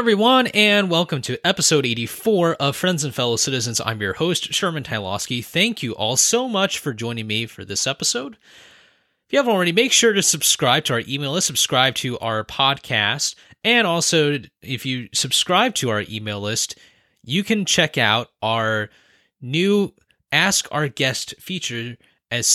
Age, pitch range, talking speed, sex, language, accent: 20-39, 120-170 Hz, 170 wpm, male, English, American